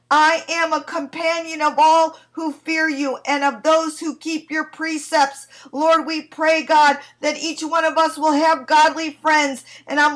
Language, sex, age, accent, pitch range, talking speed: English, female, 50-69, American, 305-350 Hz, 185 wpm